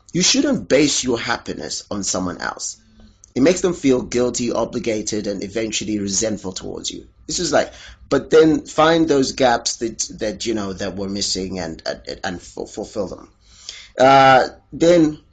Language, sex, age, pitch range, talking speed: English, male, 30-49, 100-145 Hz, 160 wpm